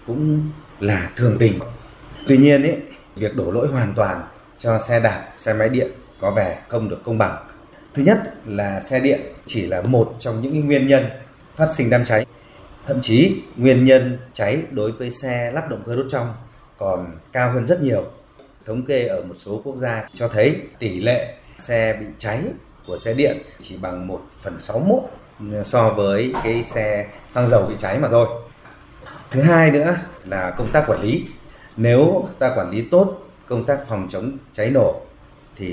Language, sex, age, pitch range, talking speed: Vietnamese, male, 30-49, 110-145 Hz, 185 wpm